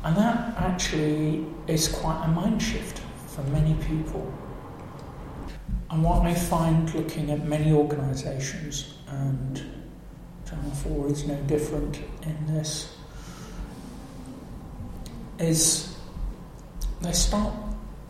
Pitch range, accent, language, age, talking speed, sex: 145-165 Hz, British, English, 40-59, 95 wpm, male